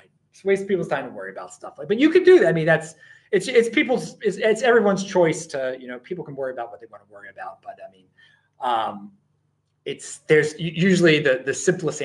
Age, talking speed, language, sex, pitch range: 30-49, 230 wpm, English, male, 145-215 Hz